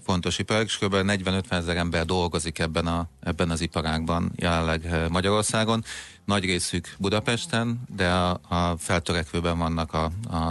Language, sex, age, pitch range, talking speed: Hungarian, male, 30-49, 85-100 Hz, 120 wpm